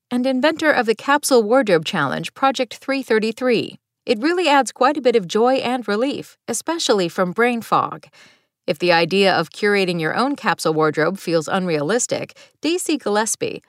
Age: 40-59